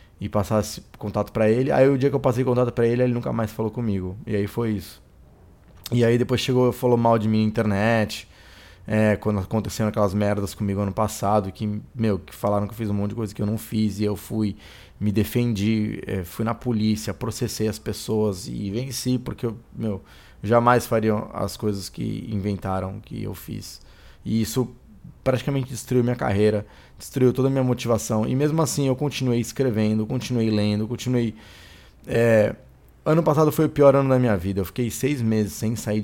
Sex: male